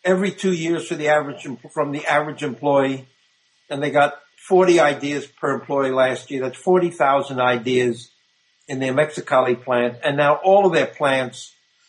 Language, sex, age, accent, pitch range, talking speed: English, male, 60-79, American, 140-185 Hz, 160 wpm